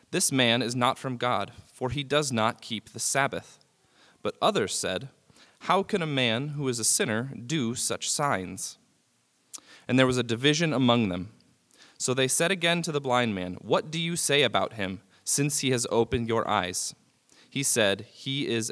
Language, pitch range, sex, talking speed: English, 110-145 Hz, male, 185 wpm